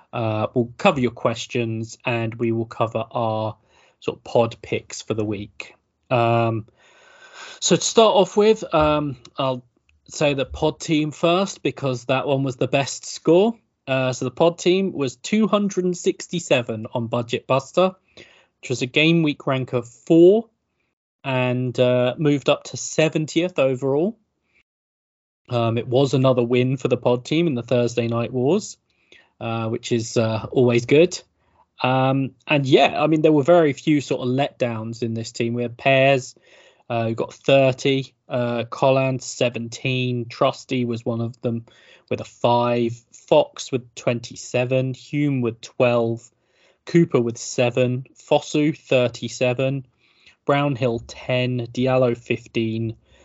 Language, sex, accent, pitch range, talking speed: English, male, British, 115-145 Hz, 145 wpm